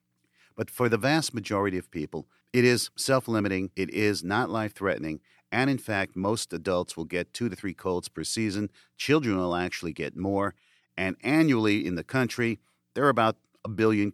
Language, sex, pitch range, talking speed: English, male, 85-110 Hz, 180 wpm